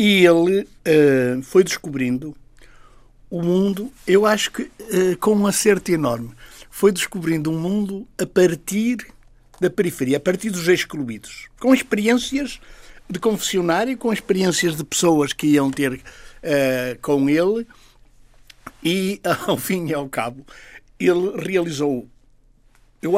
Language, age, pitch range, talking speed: Portuguese, 60-79, 140-200 Hz, 120 wpm